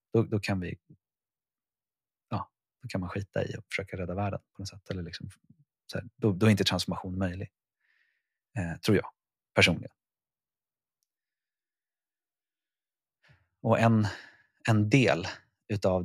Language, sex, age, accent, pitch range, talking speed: Swedish, male, 30-49, native, 90-115 Hz, 135 wpm